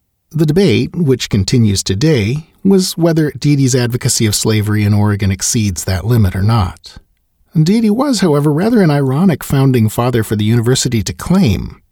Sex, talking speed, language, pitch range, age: male, 155 wpm, English, 105-145 Hz, 40-59